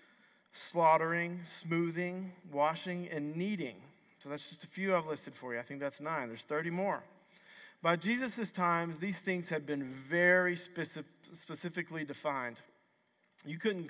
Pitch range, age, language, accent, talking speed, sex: 150-180 Hz, 40-59, English, American, 145 wpm, male